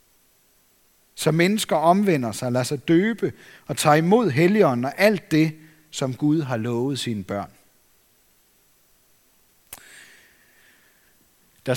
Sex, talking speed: male, 105 wpm